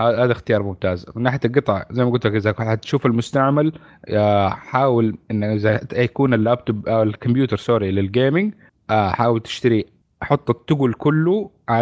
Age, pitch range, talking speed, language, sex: 30-49, 105-130 Hz, 135 wpm, Arabic, male